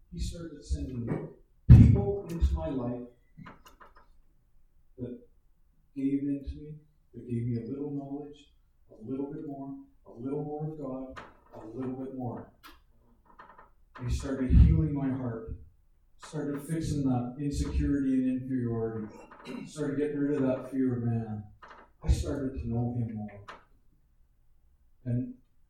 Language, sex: English, male